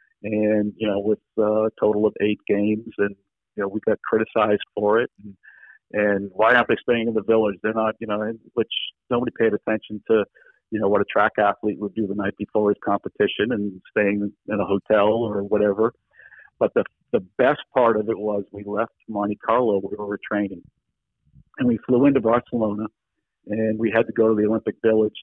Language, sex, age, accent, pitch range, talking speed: English, male, 50-69, American, 105-110 Hz, 200 wpm